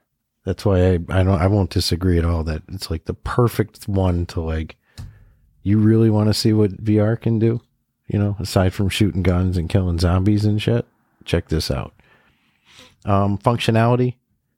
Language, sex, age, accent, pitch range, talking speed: English, male, 40-59, American, 90-110 Hz, 175 wpm